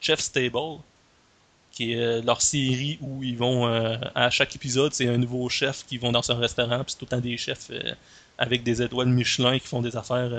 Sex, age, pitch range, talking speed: male, 30-49, 120-140 Hz, 225 wpm